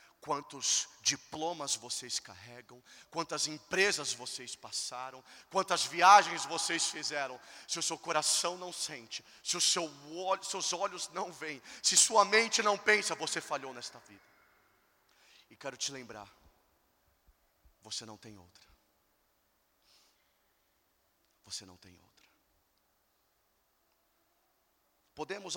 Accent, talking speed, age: Brazilian, 110 wpm, 40-59